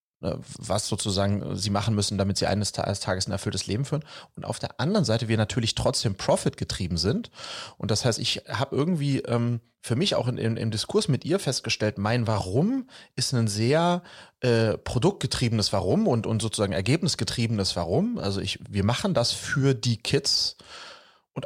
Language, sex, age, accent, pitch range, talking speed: German, male, 30-49, German, 110-145 Hz, 175 wpm